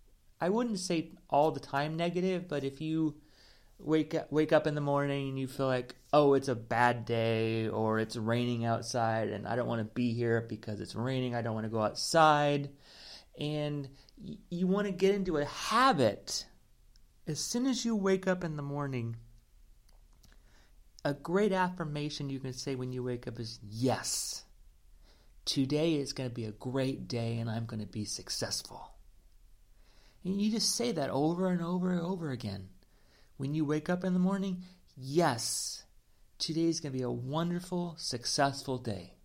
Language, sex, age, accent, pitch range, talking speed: English, male, 30-49, American, 120-175 Hz, 175 wpm